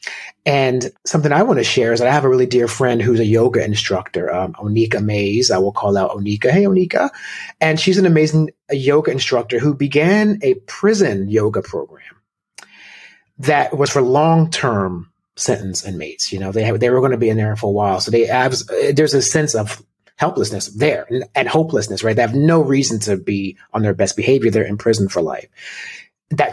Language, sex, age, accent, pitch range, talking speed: English, male, 30-49, American, 105-145 Hz, 200 wpm